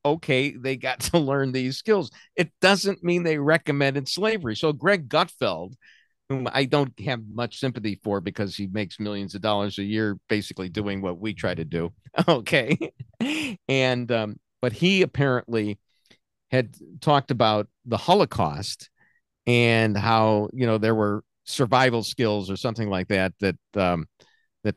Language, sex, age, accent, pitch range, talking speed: English, male, 50-69, American, 105-140 Hz, 155 wpm